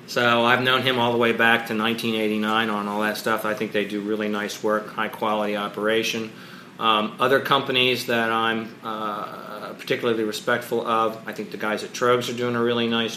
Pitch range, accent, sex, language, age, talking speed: 110-120 Hz, American, male, English, 40-59, 195 wpm